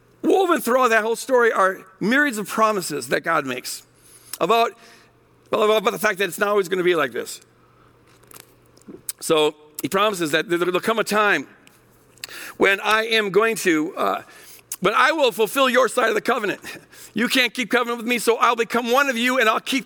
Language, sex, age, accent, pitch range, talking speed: English, male, 50-69, American, 190-245 Hz, 195 wpm